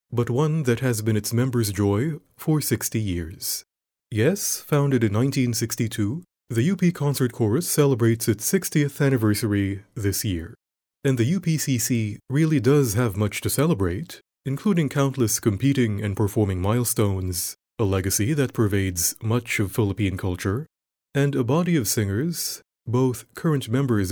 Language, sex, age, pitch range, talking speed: English, male, 30-49, 105-140 Hz, 140 wpm